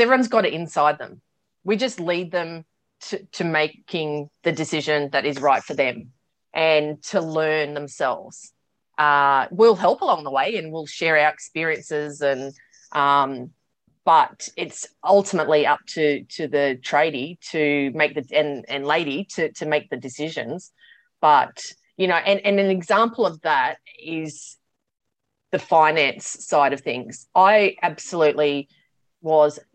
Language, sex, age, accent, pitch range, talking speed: English, female, 30-49, Australian, 145-175 Hz, 145 wpm